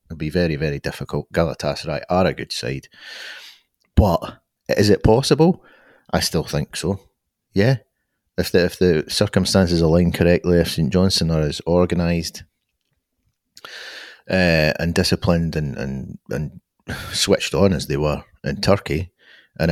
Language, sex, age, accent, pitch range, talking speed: English, male, 30-49, British, 75-95 Hz, 135 wpm